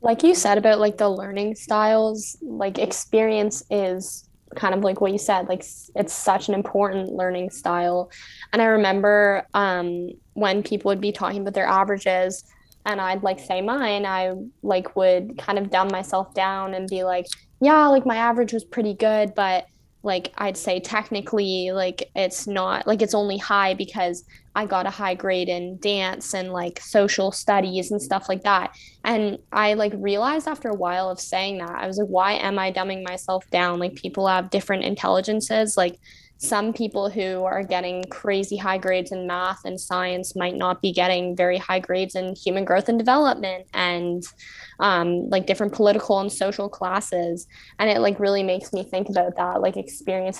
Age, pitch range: 10-29, 185-205 Hz